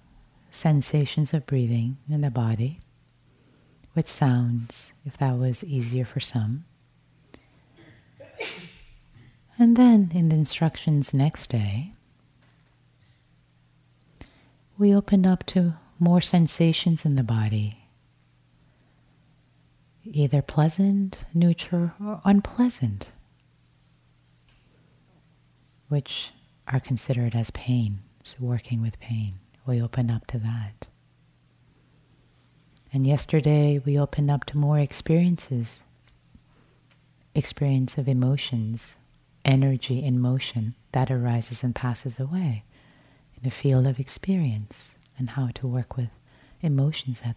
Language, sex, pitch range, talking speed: English, female, 120-155 Hz, 100 wpm